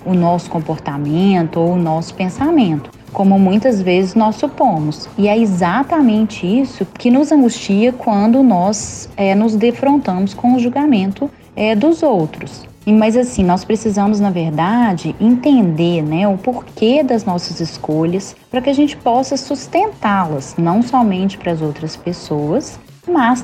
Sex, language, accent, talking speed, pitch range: female, Portuguese, Brazilian, 140 wpm, 175-250 Hz